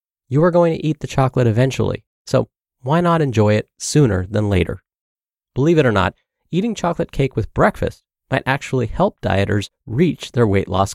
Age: 30-49